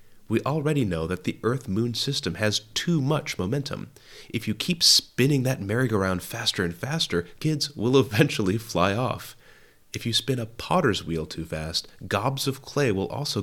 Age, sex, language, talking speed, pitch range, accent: 30-49, male, English, 170 wpm, 100-135 Hz, American